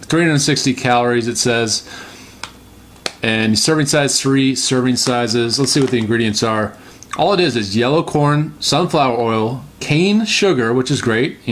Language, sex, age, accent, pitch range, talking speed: English, male, 30-49, American, 115-140 Hz, 155 wpm